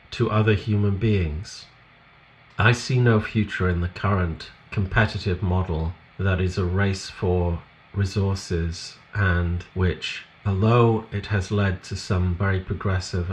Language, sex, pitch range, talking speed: English, male, 90-110 Hz, 130 wpm